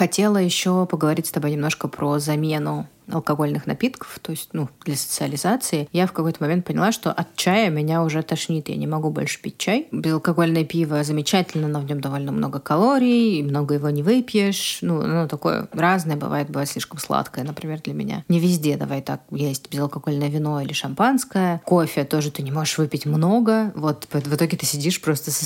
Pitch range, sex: 150-195 Hz, female